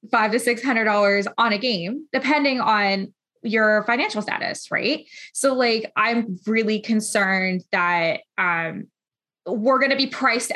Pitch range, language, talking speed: 210-270 Hz, English, 140 wpm